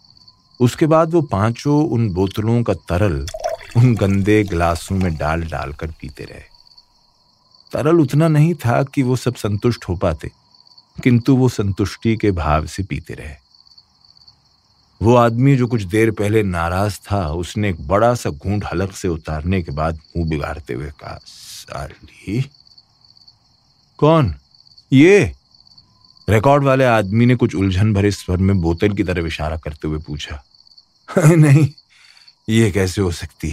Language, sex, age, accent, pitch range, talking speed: Hindi, male, 40-59, native, 90-120 Hz, 140 wpm